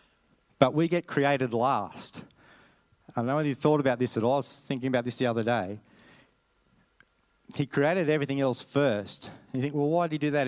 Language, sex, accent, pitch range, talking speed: English, male, Australian, 115-145 Hz, 205 wpm